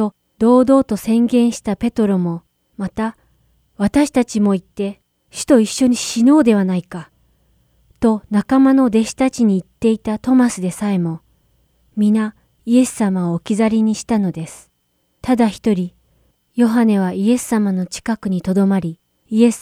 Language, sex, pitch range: Japanese, female, 185-240 Hz